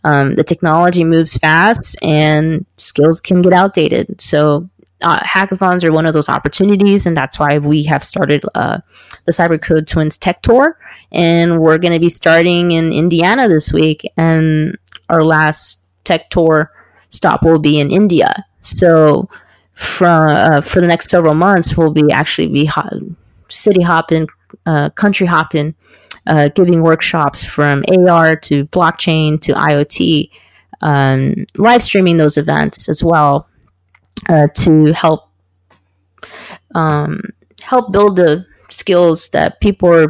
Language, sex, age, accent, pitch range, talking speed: English, female, 20-39, American, 150-180 Hz, 140 wpm